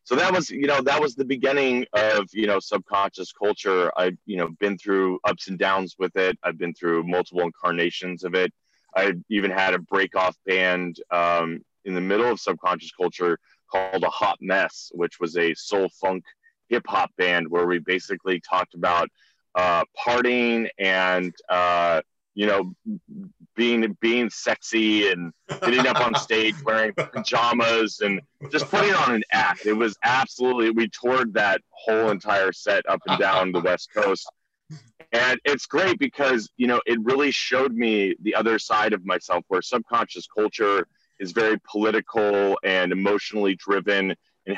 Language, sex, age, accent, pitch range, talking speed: English, male, 30-49, American, 95-115 Hz, 165 wpm